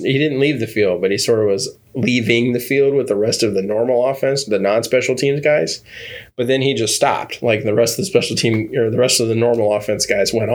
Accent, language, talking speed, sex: American, English, 255 wpm, male